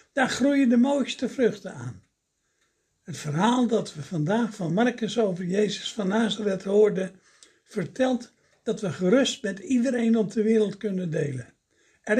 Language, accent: Dutch, Dutch